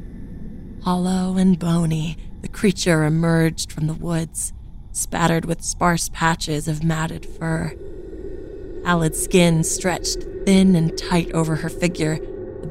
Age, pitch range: 20-39, 160-190 Hz